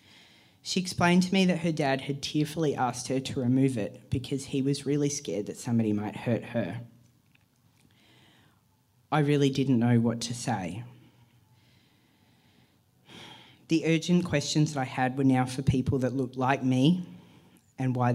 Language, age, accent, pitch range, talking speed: English, 40-59, Australian, 120-145 Hz, 155 wpm